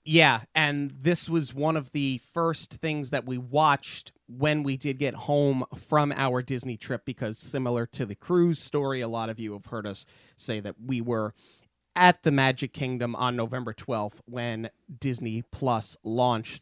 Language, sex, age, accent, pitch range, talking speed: English, male, 30-49, American, 120-155 Hz, 175 wpm